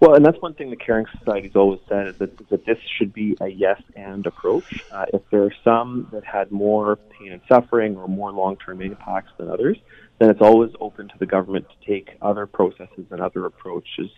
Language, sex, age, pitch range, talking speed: English, male, 30-49, 100-110 Hz, 210 wpm